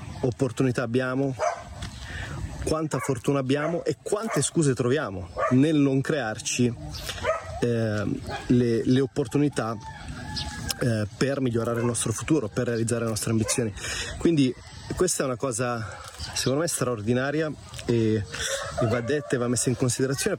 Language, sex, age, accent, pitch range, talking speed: Italian, male, 30-49, native, 110-130 Hz, 130 wpm